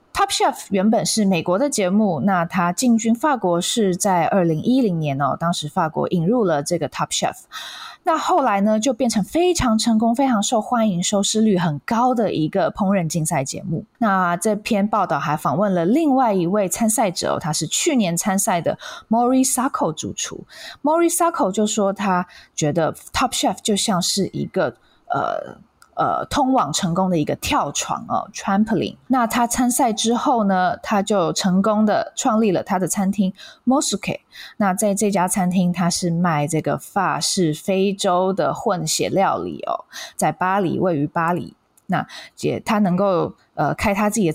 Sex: female